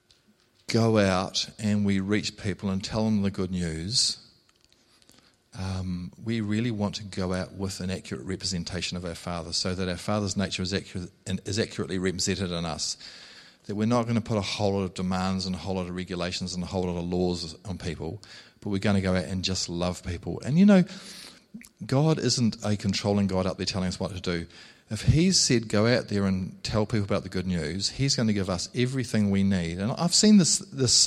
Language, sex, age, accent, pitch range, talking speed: English, male, 40-59, Australian, 95-110 Hz, 220 wpm